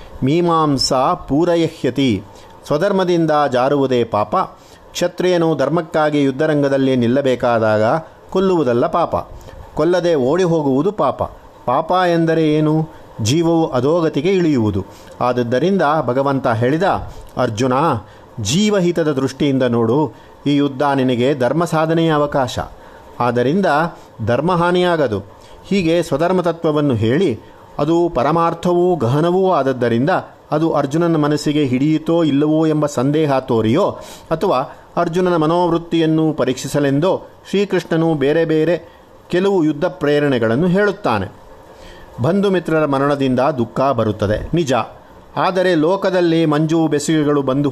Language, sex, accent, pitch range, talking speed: Kannada, male, native, 125-170 Hz, 90 wpm